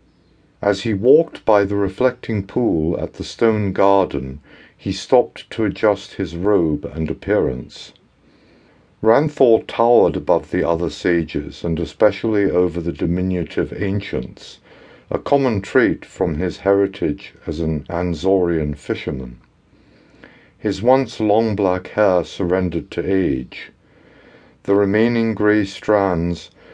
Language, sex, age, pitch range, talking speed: English, male, 60-79, 85-105 Hz, 120 wpm